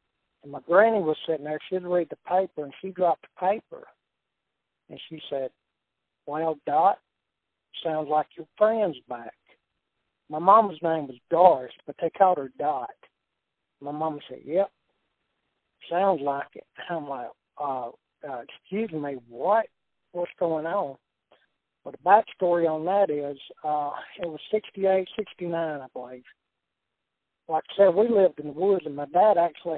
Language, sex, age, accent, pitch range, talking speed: English, male, 60-79, American, 150-180 Hz, 155 wpm